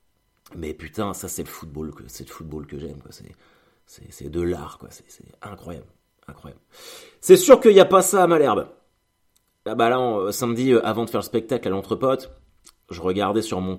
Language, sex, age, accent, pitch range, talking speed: French, male, 30-49, French, 95-125 Hz, 205 wpm